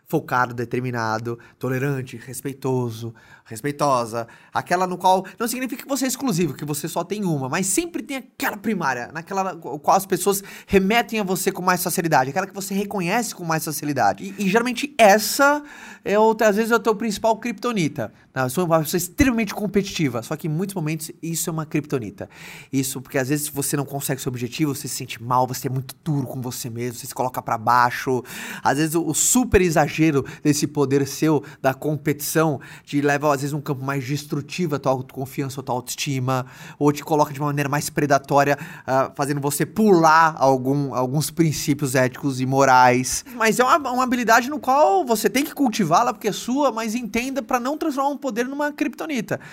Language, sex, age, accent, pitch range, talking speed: Portuguese, male, 20-39, Brazilian, 140-205 Hz, 195 wpm